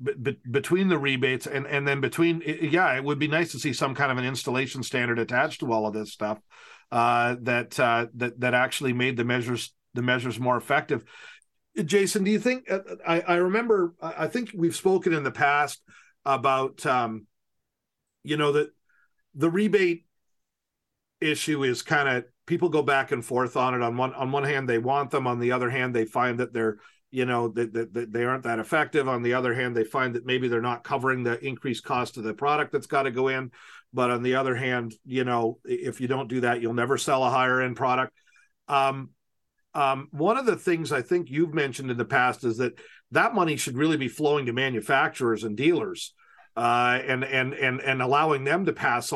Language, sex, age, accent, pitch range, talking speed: English, male, 40-59, American, 120-150 Hz, 205 wpm